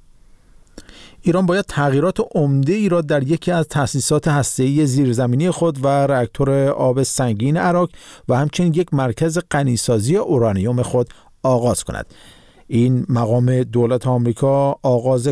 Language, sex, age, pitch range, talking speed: Persian, male, 50-69, 120-155 Hz, 125 wpm